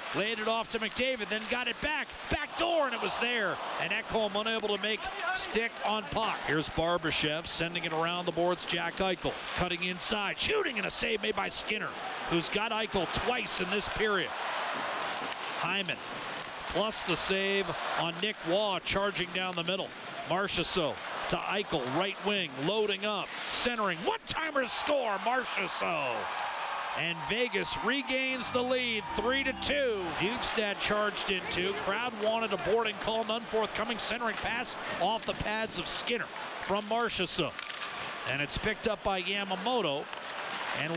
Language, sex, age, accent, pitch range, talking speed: English, male, 40-59, American, 190-245 Hz, 150 wpm